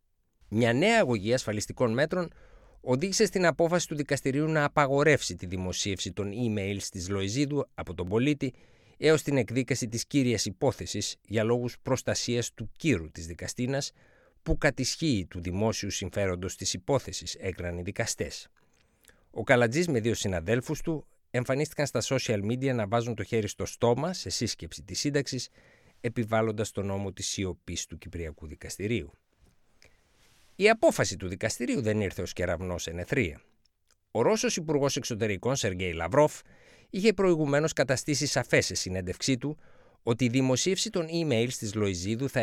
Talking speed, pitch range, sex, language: 145 wpm, 95-140 Hz, male, Greek